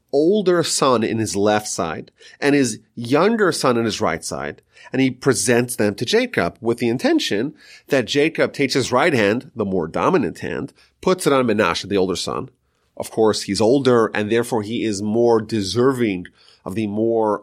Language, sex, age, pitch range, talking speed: English, male, 30-49, 110-165 Hz, 185 wpm